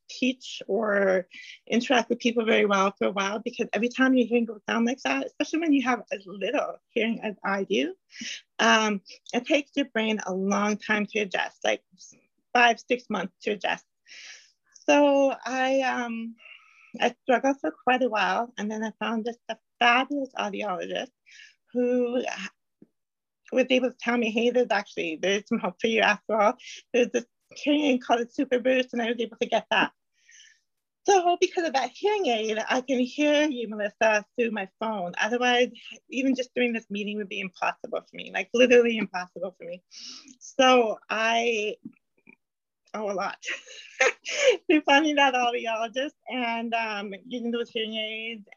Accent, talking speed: American, 170 wpm